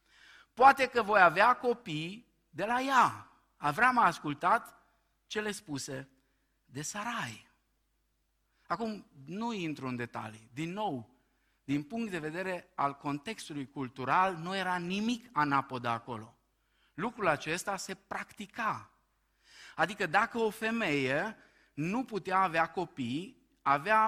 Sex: male